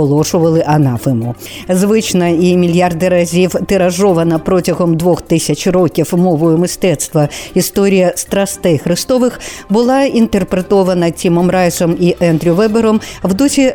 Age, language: 50-69, Ukrainian